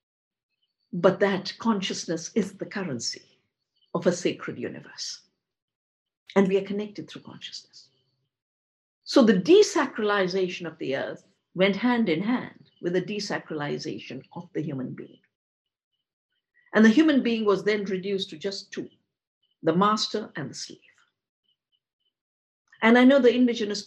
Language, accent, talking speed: English, Indian, 135 wpm